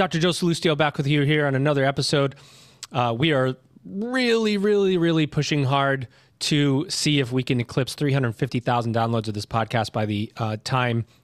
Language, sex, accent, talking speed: English, male, American, 175 wpm